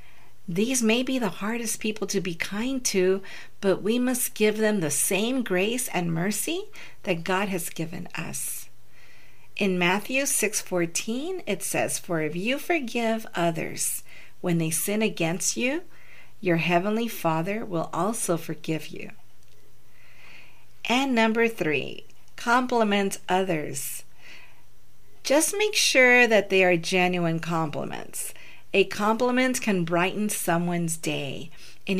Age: 50-69